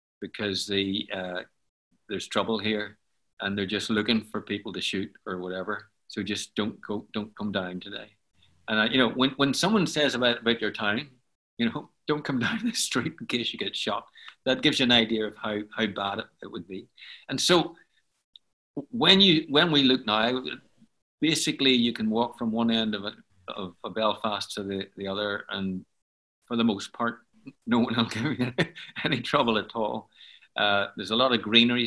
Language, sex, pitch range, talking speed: English, male, 105-130 Hz, 200 wpm